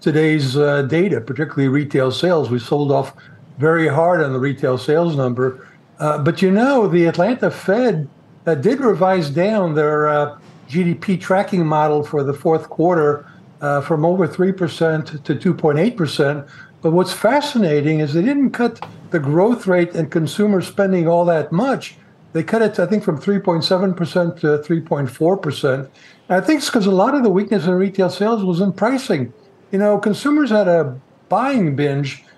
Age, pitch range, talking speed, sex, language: 60-79, 155-195 Hz, 165 wpm, male, English